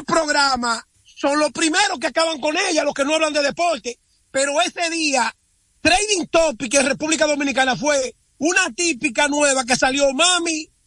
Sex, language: male, Spanish